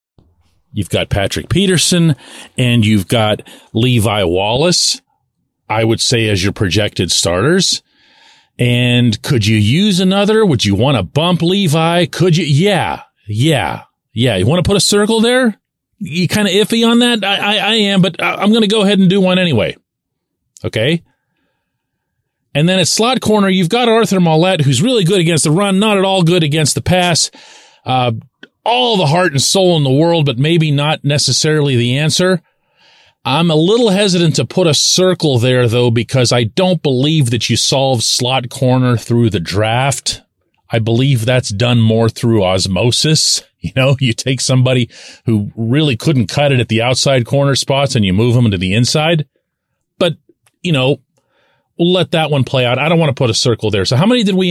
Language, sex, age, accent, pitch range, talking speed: English, male, 40-59, American, 120-180 Hz, 185 wpm